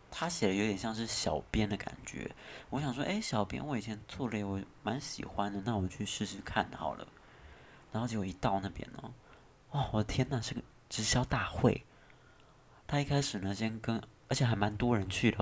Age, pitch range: 20-39, 100-125 Hz